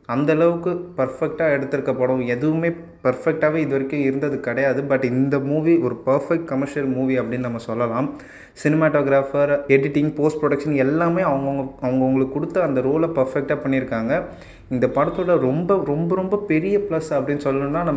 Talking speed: 135 wpm